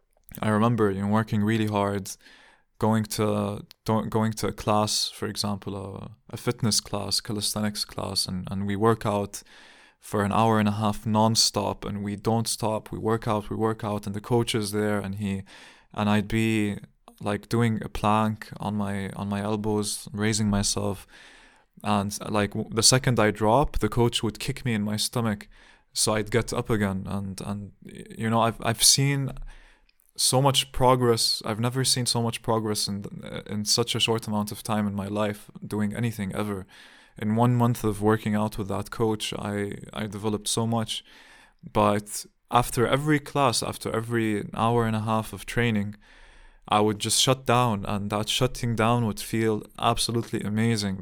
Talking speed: 180 wpm